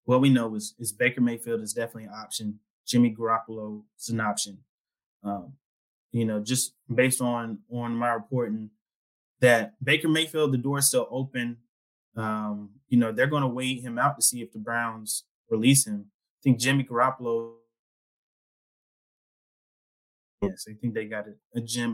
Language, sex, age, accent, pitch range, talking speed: English, male, 20-39, American, 110-130 Hz, 165 wpm